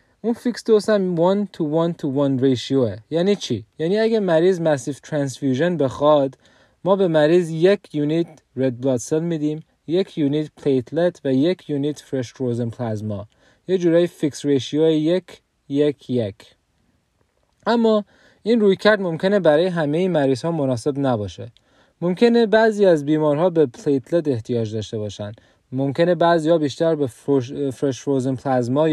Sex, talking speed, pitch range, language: male, 140 wpm, 130-175 Hz, Persian